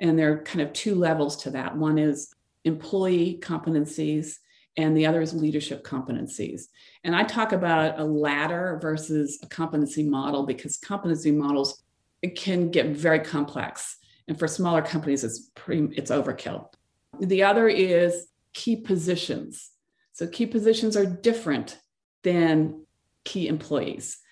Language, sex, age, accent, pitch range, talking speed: English, female, 40-59, American, 155-215 Hz, 145 wpm